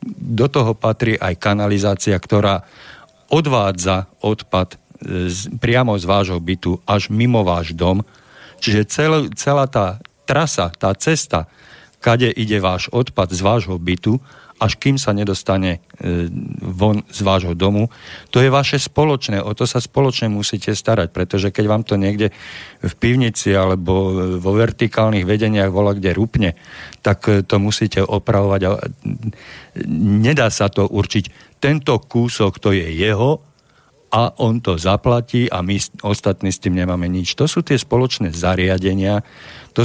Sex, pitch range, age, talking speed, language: male, 95-120 Hz, 50-69, 140 wpm, Slovak